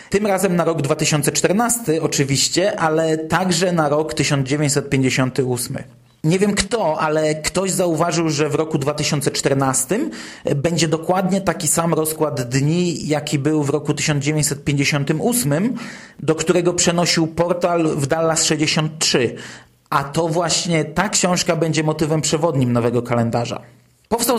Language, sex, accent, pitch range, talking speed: Polish, male, native, 140-180 Hz, 125 wpm